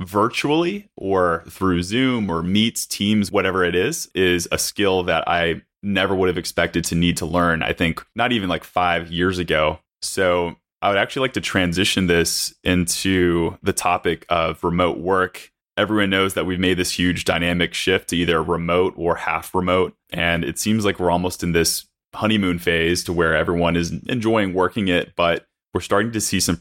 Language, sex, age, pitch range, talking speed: English, male, 20-39, 85-95 Hz, 185 wpm